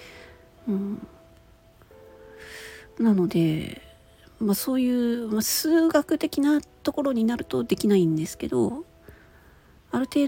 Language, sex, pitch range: Japanese, female, 165-265 Hz